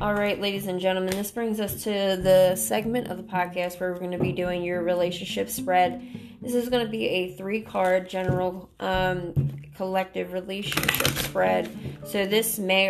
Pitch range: 175-200 Hz